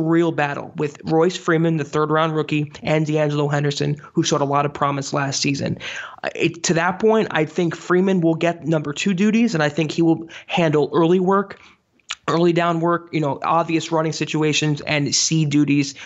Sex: male